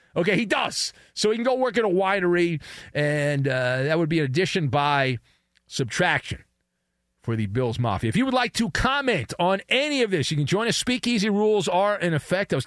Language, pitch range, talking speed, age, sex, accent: English, 130-200 Hz, 215 wpm, 40-59, male, American